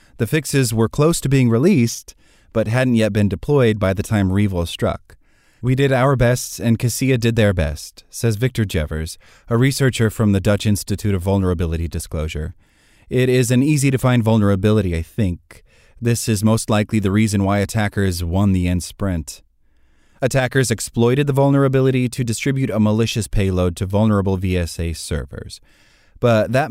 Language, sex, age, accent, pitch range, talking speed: English, male, 30-49, American, 90-120 Hz, 160 wpm